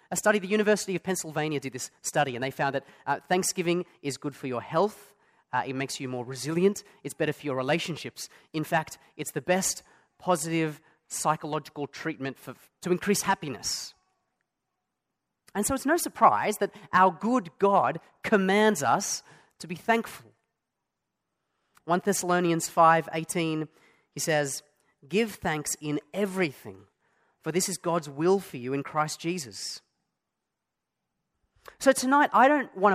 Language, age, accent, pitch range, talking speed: English, 30-49, Australian, 145-195 Hz, 150 wpm